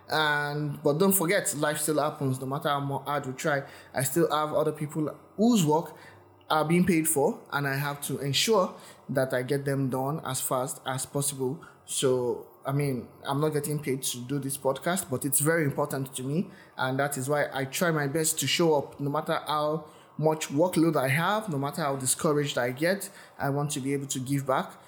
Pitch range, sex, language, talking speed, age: 135-160 Hz, male, English, 210 wpm, 20-39